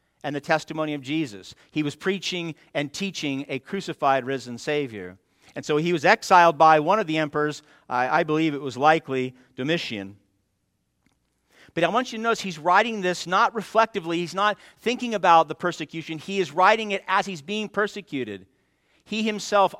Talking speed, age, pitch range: 175 wpm, 50-69, 145-185 Hz